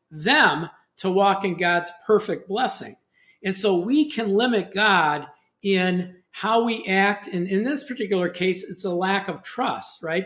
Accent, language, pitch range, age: American, English, 185-230 Hz, 50-69